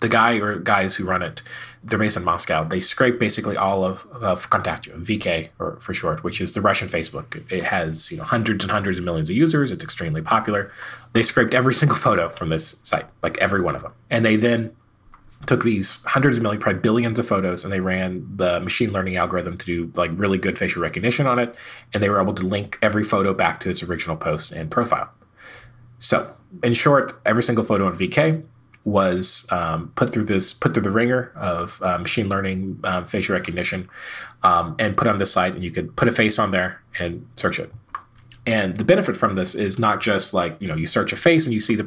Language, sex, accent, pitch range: English, male, American, 95-120 Hz